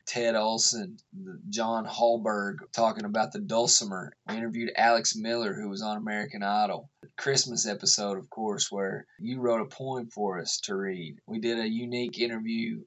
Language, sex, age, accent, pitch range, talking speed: English, male, 20-39, American, 110-125 Hz, 170 wpm